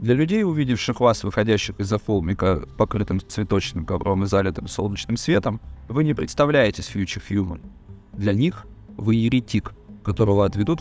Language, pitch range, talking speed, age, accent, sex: Russian, 100-130 Hz, 135 wpm, 30-49, native, male